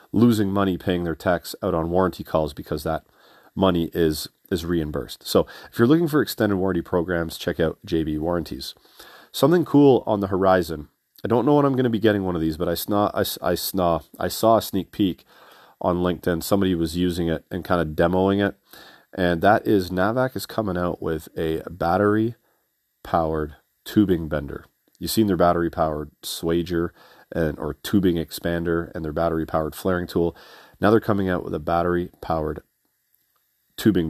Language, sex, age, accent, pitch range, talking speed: English, male, 40-59, American, 85-95 Hz, 175 wpm